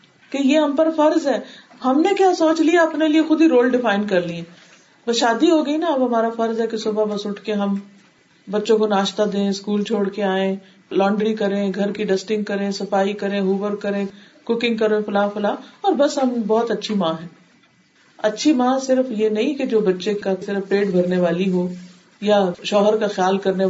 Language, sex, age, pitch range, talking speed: Urdu, female, 50-69, 190-240 Hz, 210 wpm